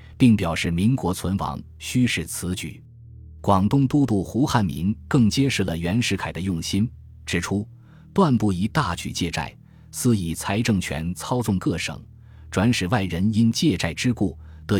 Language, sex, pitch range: Chinese, male, 85-115 Hz